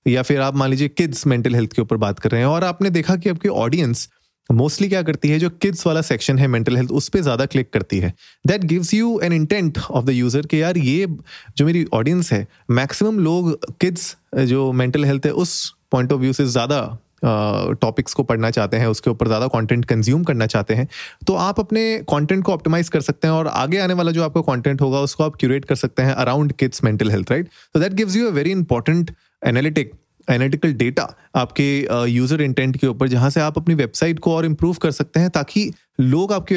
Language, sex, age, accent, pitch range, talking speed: Hindi, male, 30-49, native, 125-170 Hz, 225 wpm